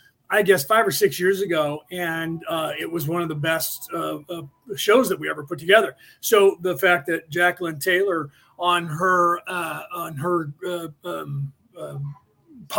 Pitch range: 165-185 Hz